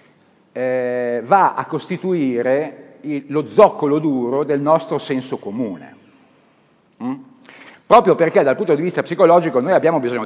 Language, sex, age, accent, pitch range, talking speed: Italian, male, 50-69, native, 115-155 Hz, 135 wpm